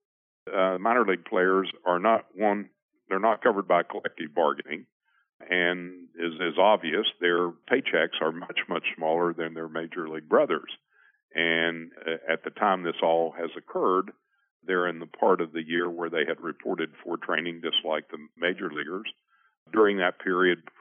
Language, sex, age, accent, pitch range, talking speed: English, male, 50-69, American, 80-90 Hz, 165 wpm